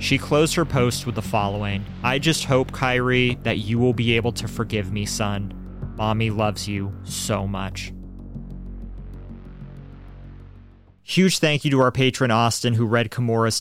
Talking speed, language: 155 wpm, English